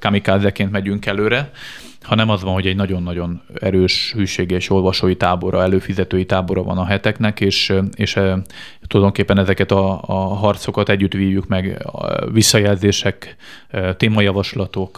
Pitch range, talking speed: 95-105 Hz, 130 wpm